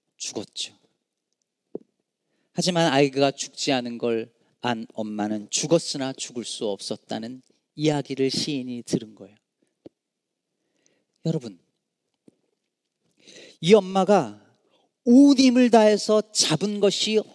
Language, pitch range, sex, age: Korean, 150-245 Hz, male, 40-59